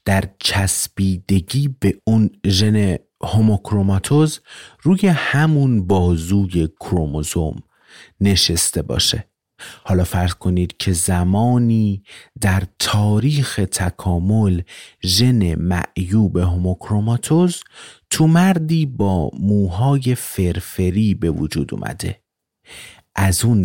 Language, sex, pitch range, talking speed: Persian, male, 90-110 Hz, 85 wpm